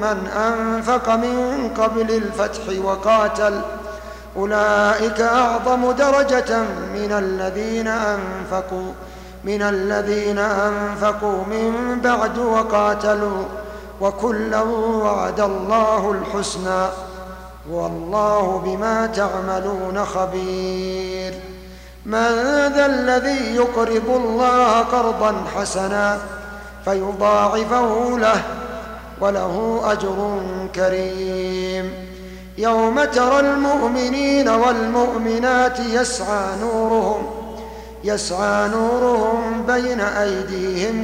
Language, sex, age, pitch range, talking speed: Arabic, male, 50-69, 195-225 Hz, 70 wpm